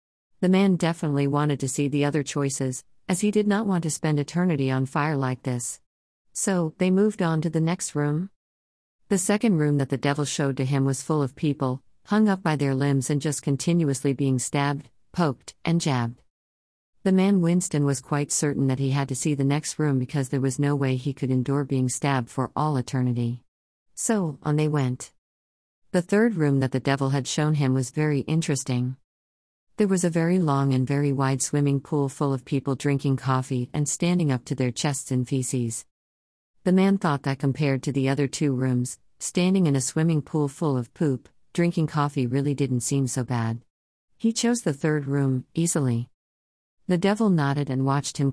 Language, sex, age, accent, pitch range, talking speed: English, female, 50-69, American, 130-155 Hz, 195 wpm